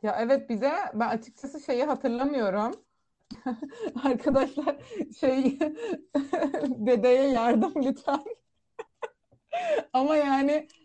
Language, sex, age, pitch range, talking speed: Turkish, female, 30-49, 210-275 Hz, 75 wpm